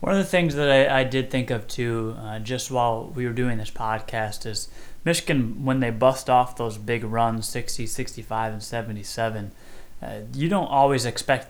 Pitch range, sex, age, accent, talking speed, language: 115-135 Hz, male, 20-39, American, 195 wpm, English